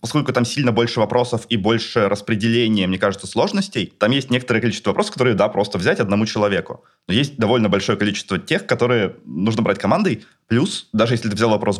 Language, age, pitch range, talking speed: Russian, 20-39, 105-125 Hz, 195 wpm